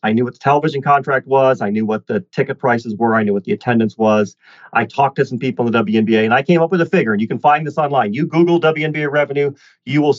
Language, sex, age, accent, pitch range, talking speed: English, male, 40-59, American, 115-155 Hz, 275 wpm